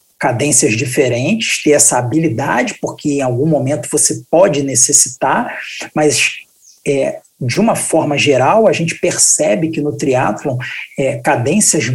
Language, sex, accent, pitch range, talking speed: Portuguese, male, Brazilian, 140-170 Hz, 120 wpm